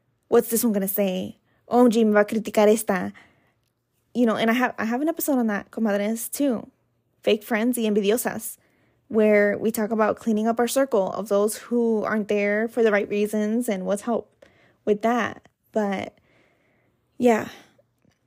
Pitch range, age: 205-245 Hz, 10-29